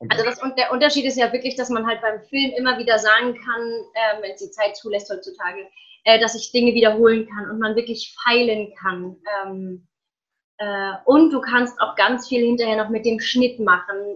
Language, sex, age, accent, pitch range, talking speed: German, female, 20-39, German, 210-245 Hz, 205 wpm